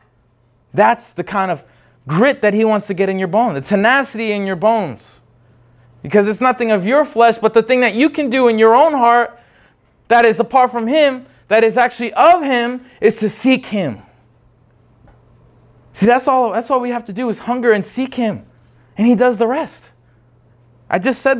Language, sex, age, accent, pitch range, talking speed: English, male, 20-39, American, 175-250 Hz, 200 wpm